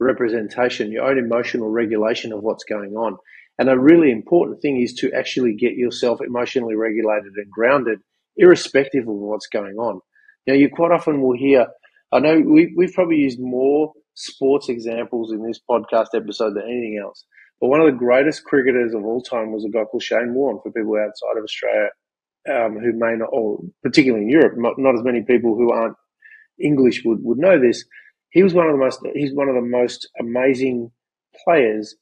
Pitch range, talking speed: 115-145 Hz, 195 wpm